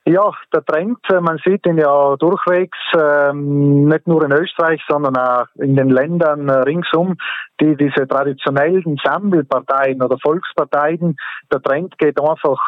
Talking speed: 135 wpm